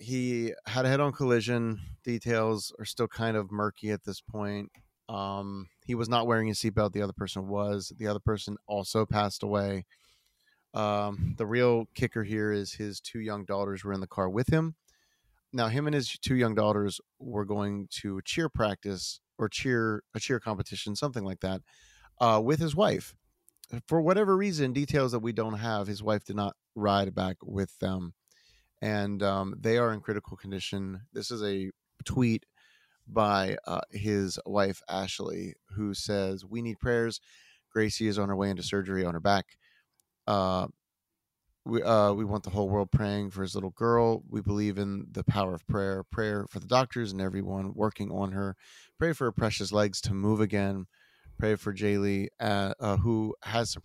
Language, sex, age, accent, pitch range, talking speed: English, male, 30-49, American, 100-115 Hz, 185 wpm